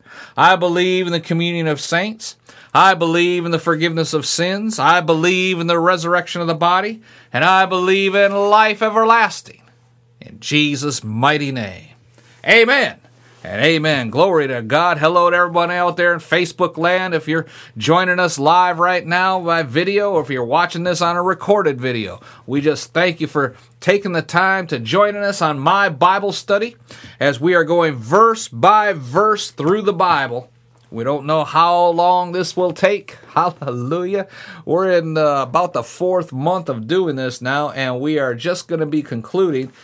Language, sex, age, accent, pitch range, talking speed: English, male, 40-59, American, 125-180 Hz, 175 wpm